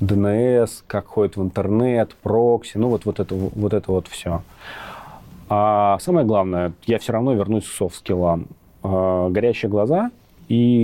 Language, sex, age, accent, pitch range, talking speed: Russian, male, 30-49, native, 90-110 Hz, 145 wpm